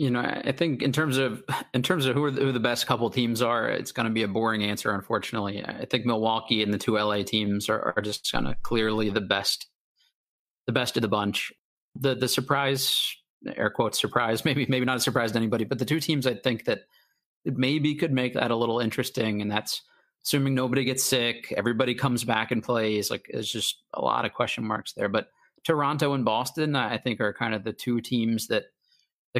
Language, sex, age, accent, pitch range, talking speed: English, male, 30-49, American, 110-130 Hz, 225 wpm